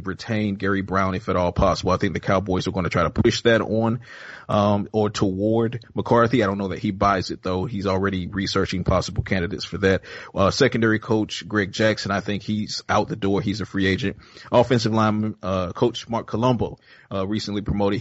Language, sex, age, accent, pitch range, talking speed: English, male, 30-49, American, 100-115 Hz, 205 wpm